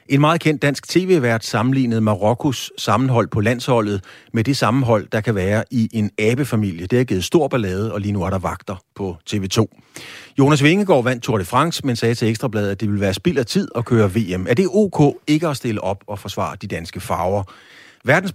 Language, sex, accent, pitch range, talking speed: Danish, male, native, 100-135 Hz, 215 wpm